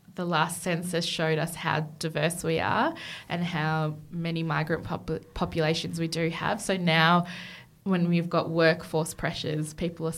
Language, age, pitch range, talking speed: English, 20-39, 160-180 Hz, 155 wpm